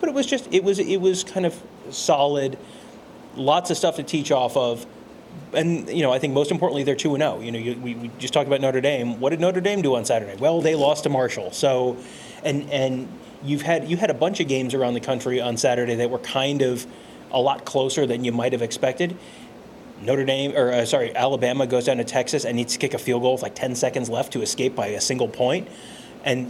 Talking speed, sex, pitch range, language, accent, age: 235 wpm, male, 125-155 Hz, English, American, 30-49